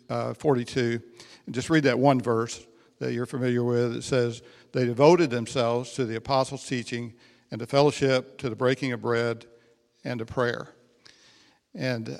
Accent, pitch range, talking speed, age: American, 120-150 Hz, 160 wpm, 60-79